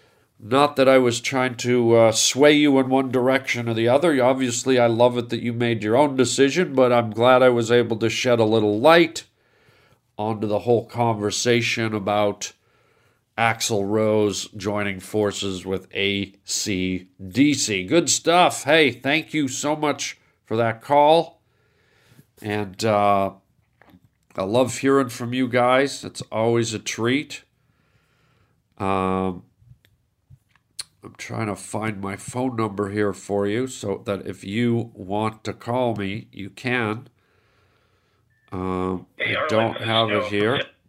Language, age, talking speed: English, 50-69, 140 wpm